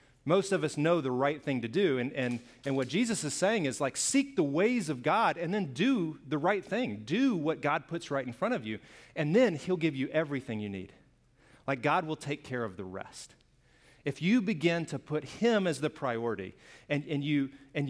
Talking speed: 225 wpm